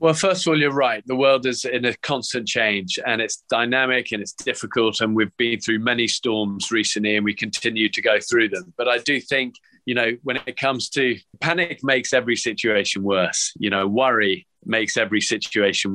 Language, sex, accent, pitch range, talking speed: English, male, British, 110-130 Hz, 205 wpm